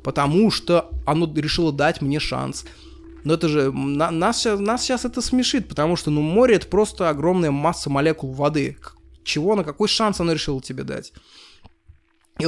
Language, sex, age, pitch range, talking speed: Russian, male, 20-39, 140-185 Hz, 165 wpm